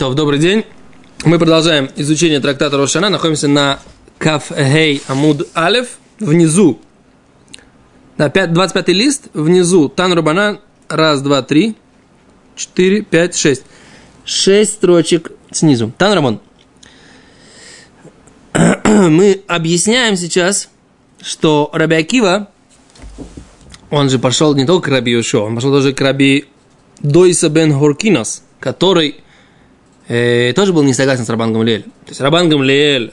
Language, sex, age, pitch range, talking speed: Russian, male, 20-39, 145-195 Hz, 105 wpm